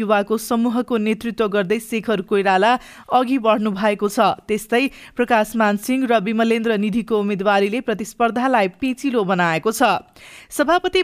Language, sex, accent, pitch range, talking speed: English, female, Indian, 220-260 Hz, 130 wpm